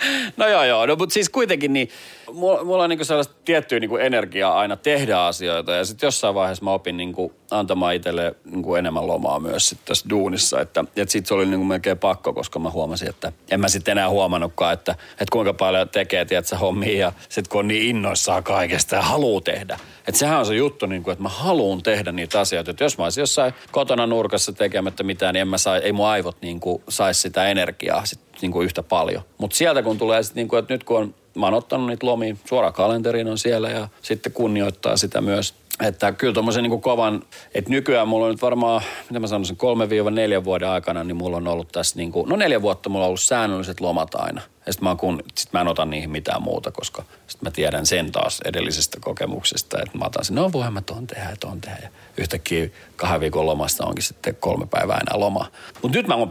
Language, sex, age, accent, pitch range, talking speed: Finnish, male, 40-59, native, 95-115 Hz, 220 wpm